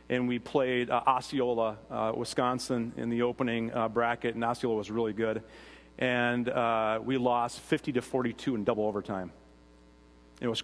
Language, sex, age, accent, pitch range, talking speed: English, male, 40-59, American, 100-130 Hz, 165 wpm